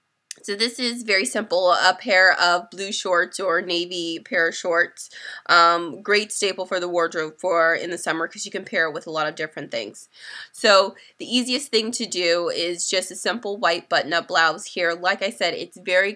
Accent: American